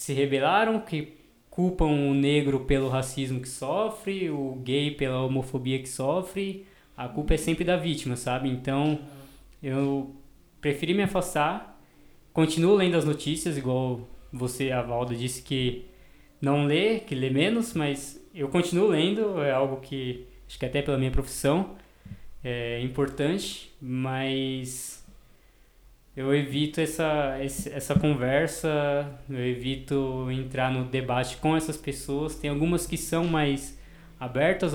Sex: male